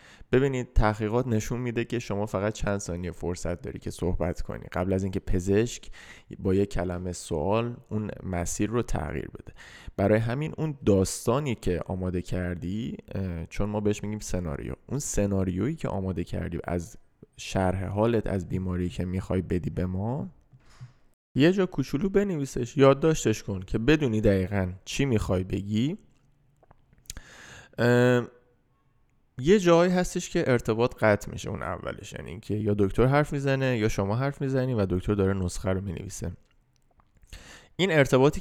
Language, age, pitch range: Persian, 20-39, 95-130 Hz